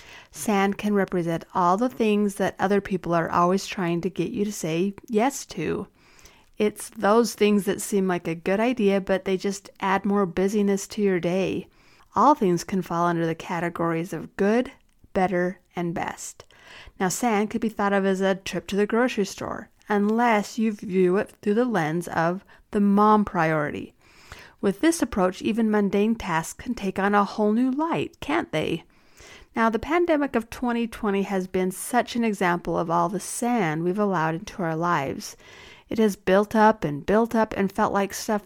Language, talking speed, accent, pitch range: English, 185 wpm, American, 180-220 Hz